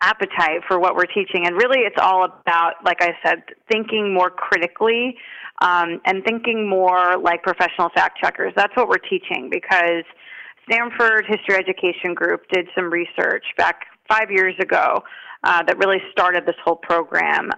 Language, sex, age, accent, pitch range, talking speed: English, female, 30-49, American, 175-210 Hz, 155 wpm